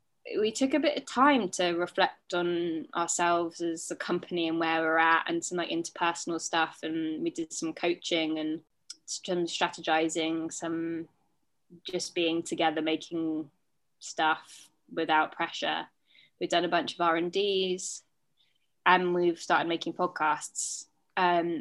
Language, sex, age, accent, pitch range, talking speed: English, female, 20-39, British, 165-215 Hz, 140 wpm